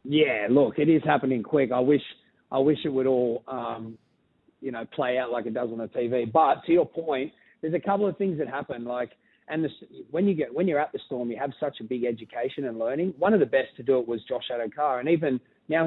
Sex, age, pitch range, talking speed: male, 30-49, 130-170 Hz, 255 wpm